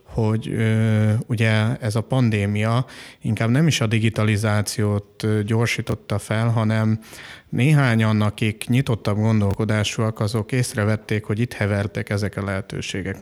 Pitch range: 105-115 Hz